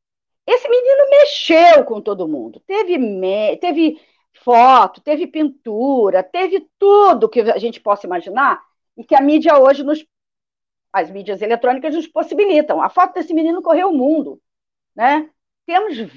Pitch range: 210-310 Hz